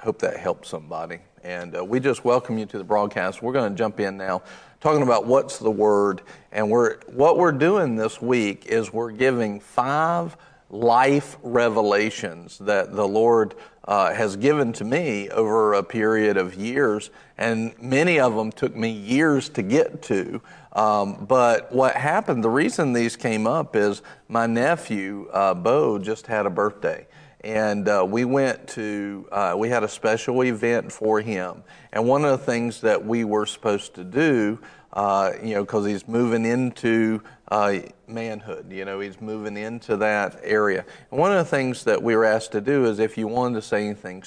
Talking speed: 185 wpm